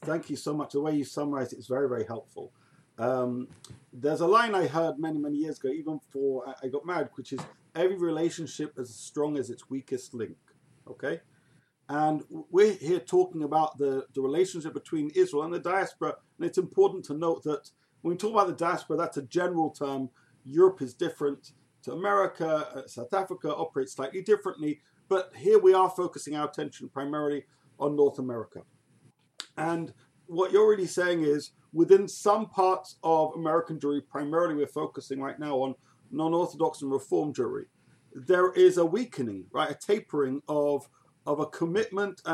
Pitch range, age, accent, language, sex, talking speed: 140-180 Hz, 50-69, British, English, male, 175 wpm